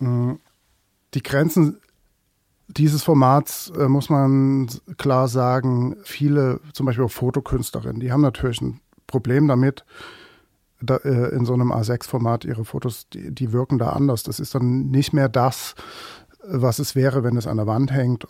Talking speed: 155 wpm